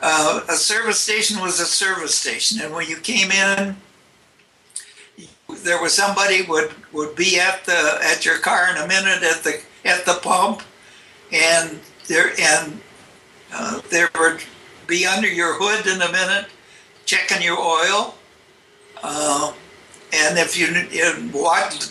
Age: 60-79